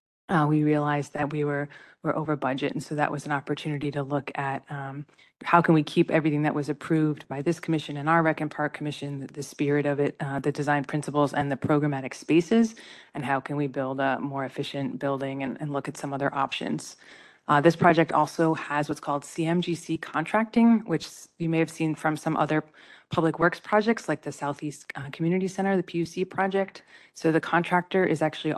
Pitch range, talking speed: 145-160 Hz, 210 wpm